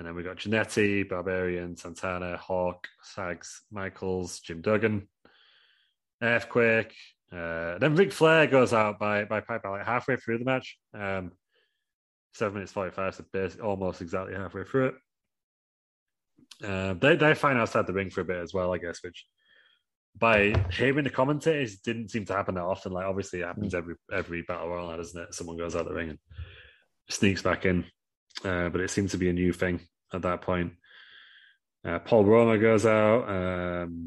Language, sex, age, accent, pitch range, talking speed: English, male, 20-39, British, 90-110 Hz, 175 wpm